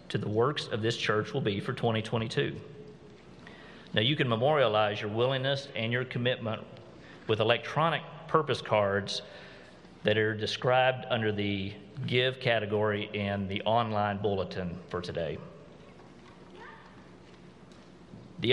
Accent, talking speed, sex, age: American, 120 wpm, male, 40-59